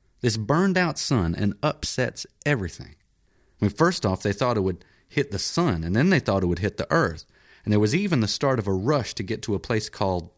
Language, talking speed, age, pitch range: English, 225 wpm, 30-49, 85-120 Hz